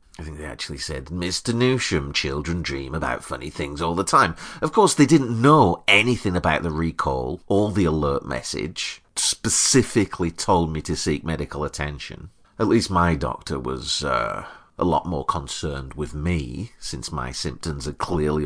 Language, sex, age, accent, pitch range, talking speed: English, male, 40-59, British, 75-100 Hz, 170 wpm